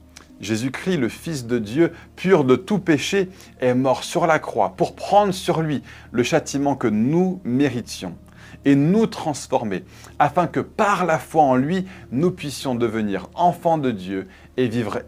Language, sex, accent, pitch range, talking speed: French, male, French, 110-160 Hz, 165 wpm